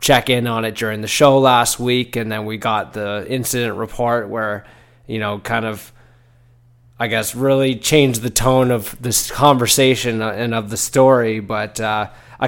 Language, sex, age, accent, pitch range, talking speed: English, male, 20-39, American, 115-130 Hz, 180 wpm